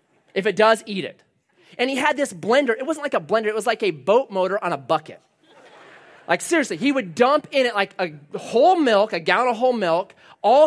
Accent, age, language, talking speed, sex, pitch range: American, 30-49, English, 230 wpm, male, 180-265 Hz